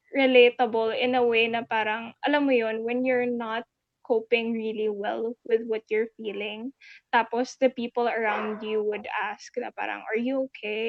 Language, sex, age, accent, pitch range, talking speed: Filipino, female, 20-39, native, 220-255 Hz, 170 wpm